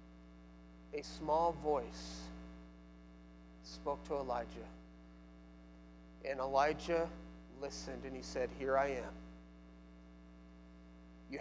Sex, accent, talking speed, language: male, American, 85 wpm, English